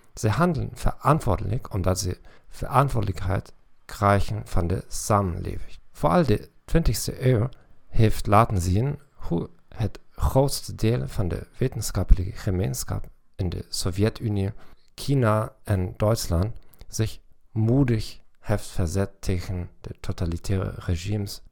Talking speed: 115 wpm